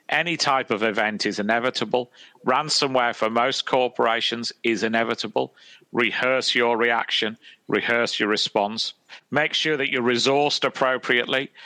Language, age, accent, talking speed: English, 40-59, British, 125 wpm